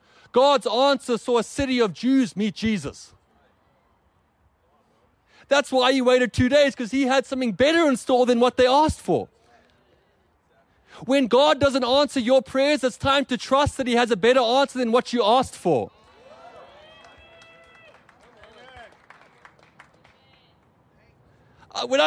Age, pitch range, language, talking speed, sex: 30-49, 240-280 Hz, English, 135 wpm, male